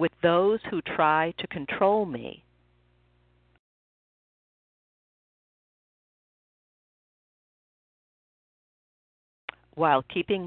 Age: 50-69